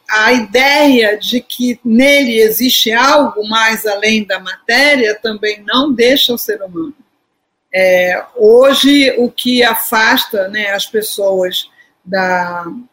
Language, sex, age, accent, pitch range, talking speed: Portuguese, female, 50-69, Brazilian, 210-280 Hz, 120 wpm